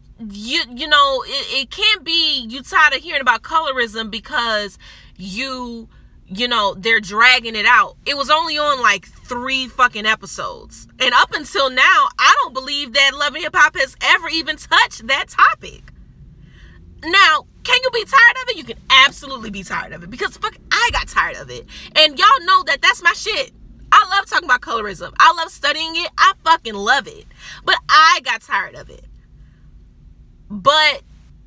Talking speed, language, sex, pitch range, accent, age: 180 wpm, English, female, 230-315 Hz, American, 20-39